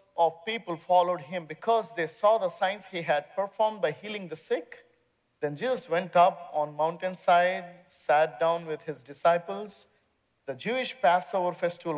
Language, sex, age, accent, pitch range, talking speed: English, male, 50-69, Indian, 170-210 Hz, 155 wpm